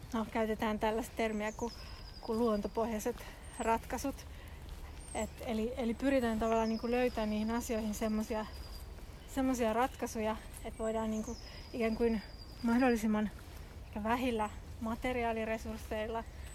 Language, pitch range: Finnish, 220-245 Hz